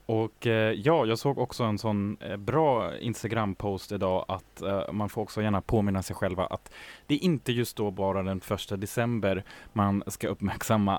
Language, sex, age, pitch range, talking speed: Swedish, male, 20-39, 100-125 Hz, 170 wpm